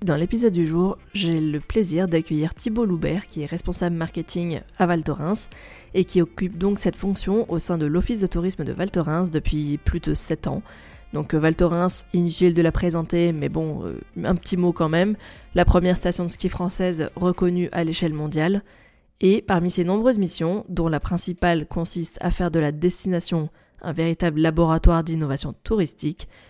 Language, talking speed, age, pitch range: French, 180 wpm, 20-39, 155-180 Hz